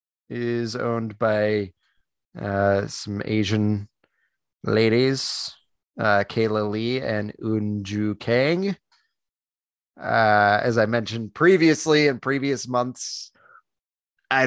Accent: American